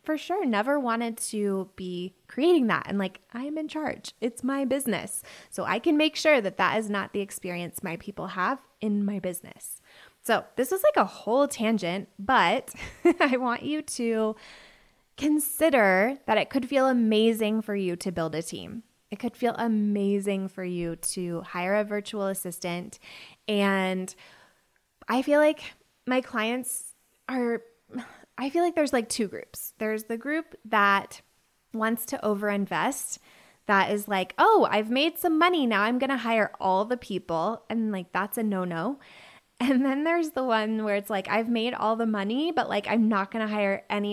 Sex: female